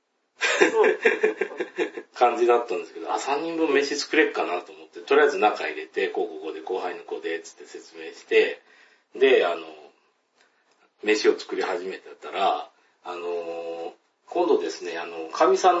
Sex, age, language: male, 40-59, Japanese